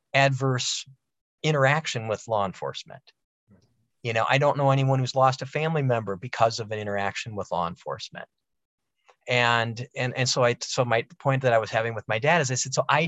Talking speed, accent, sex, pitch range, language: 195 wpm, American, male, 115-140 Hz, English